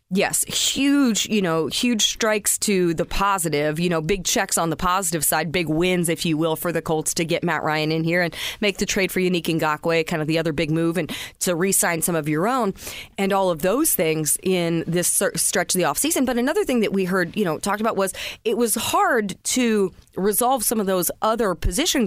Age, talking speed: 30-49, 215 wpm